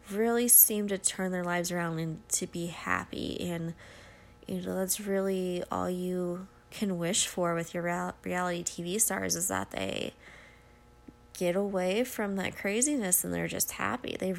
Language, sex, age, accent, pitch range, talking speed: English, female, 20-39, American, 175-220 Hz, 165 wpm